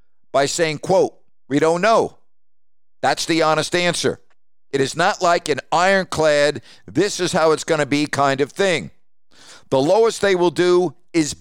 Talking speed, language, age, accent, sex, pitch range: 170 wpm, English, 50-69, American, male, 140-175 Hz